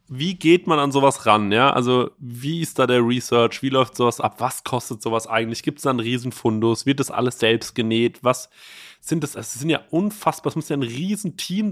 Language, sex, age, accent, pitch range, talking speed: German, male, 30-49, German, 125-160 Hz, 220 wpm